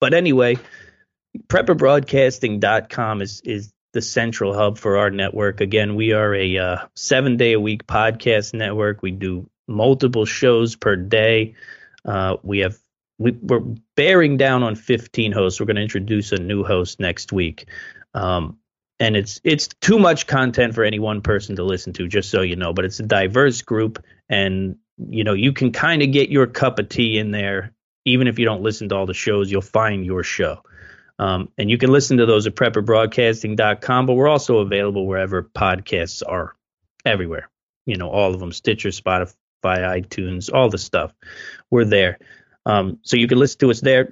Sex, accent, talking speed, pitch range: male, American, 180 wpm, 95-120 Hz